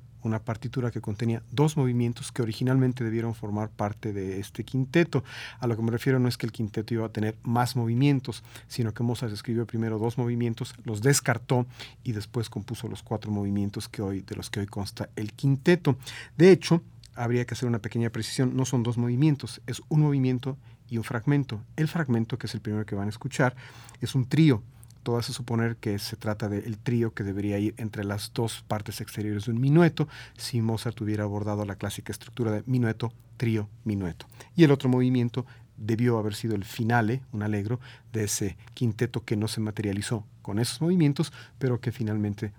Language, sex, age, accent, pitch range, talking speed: Spanish, male, 40-59, Mexican, 110-125 Hz, 190 wpm